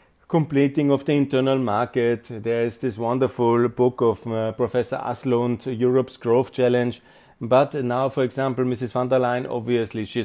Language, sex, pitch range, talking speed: German, male, 125-170 Hz, 160 wpm